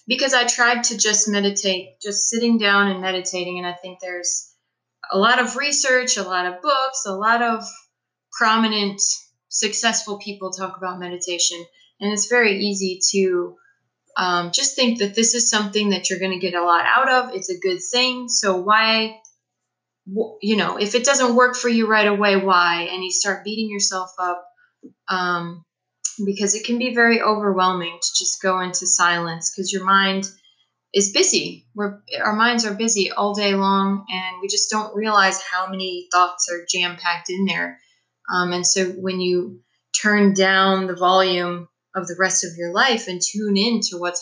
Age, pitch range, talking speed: 20-39, 180-220 Hz, 180 wpm